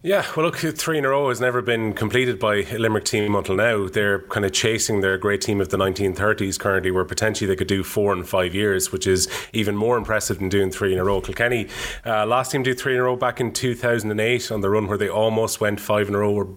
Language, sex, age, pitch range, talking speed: English, male, 30-49, 100-115 Hz, 255 wpm